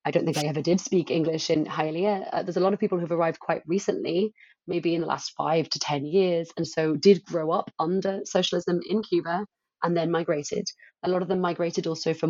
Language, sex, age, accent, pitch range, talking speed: English, female, 30-49, British, 155-185 Hz, 230 wpm